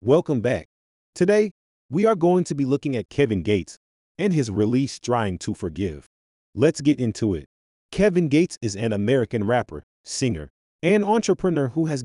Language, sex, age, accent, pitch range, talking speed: English, male, 30-49, American, 100-145 Hz, 165 wpm